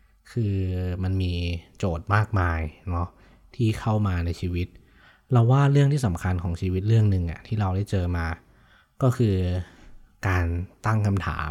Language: Thai